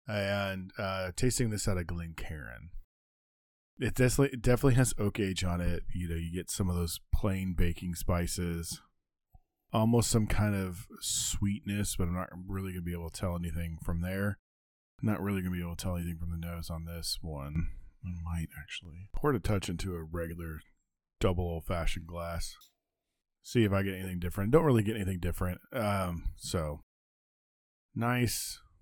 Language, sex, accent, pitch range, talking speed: English, male, American, 85-105 Hz, 180 wpm